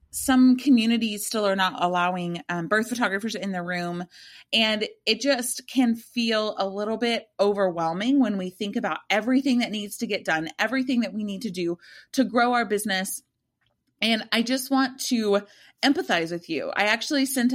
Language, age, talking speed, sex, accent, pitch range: English, 30-49, 180 wpm, female, American, 180-240 Hz